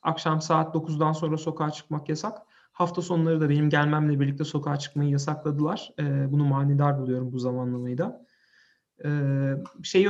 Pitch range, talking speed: 140-170 Hz, 150 wpm